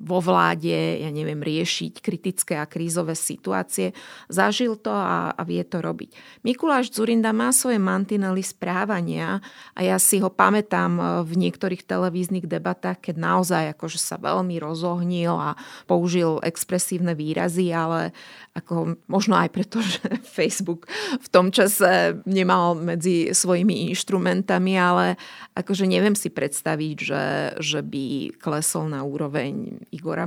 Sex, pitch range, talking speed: female, 160-205 Hz, 135 wpm